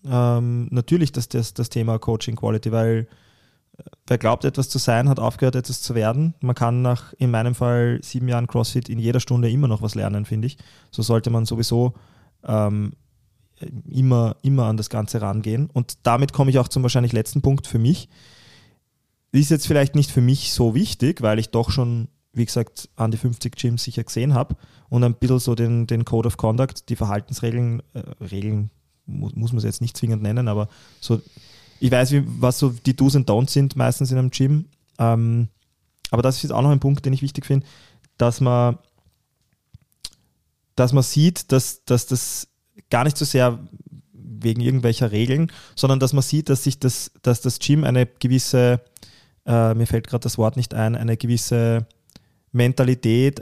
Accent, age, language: German, 20-39, German